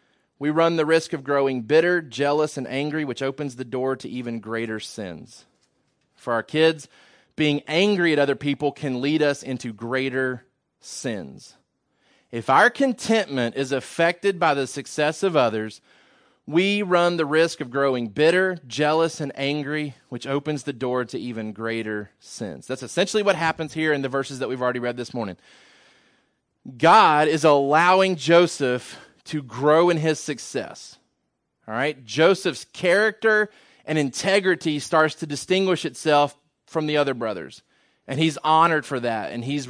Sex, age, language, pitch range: male, 30-49, English, 130-160 Hz